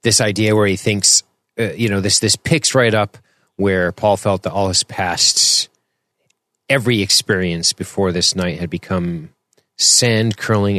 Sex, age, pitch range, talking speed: male, 30-49, 90-110 Hz, 160 wpm